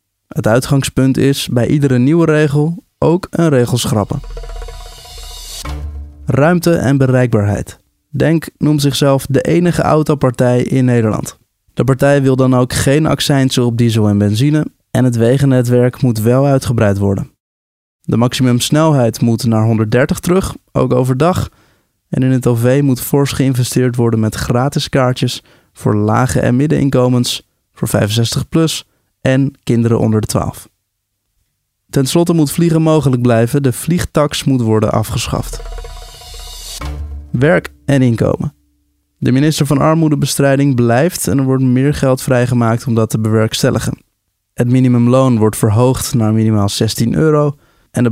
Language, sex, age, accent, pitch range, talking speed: Dutch, male, 20-39, Dutch, 110-140 Hz, 135 wpm